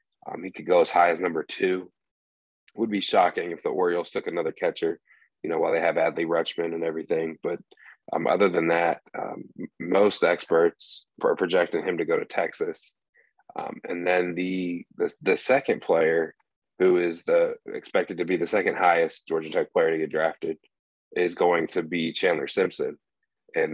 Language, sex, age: English, male, 30-49